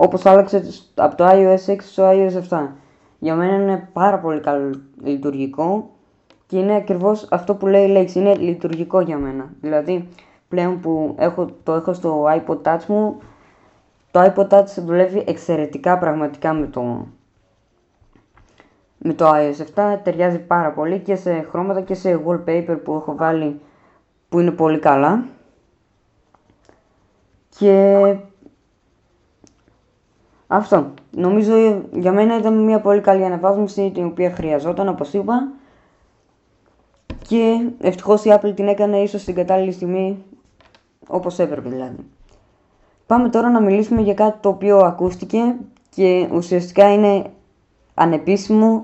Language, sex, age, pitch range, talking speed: Greek, female, 20-39, 155-200 Hz, 130 wpm